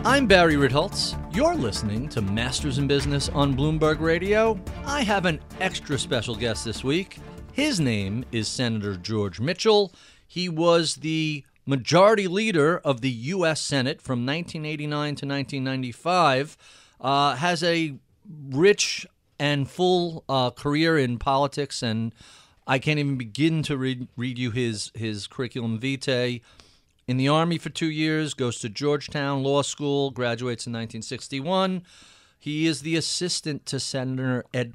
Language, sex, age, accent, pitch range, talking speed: English, male, 40-59, American, 125-160 Hz, 140 wpm